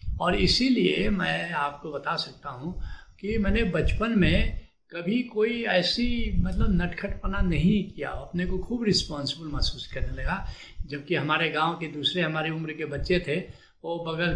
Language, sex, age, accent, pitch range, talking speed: Hindi, male, 70-89, native, 145-195 Hz, 155 wpm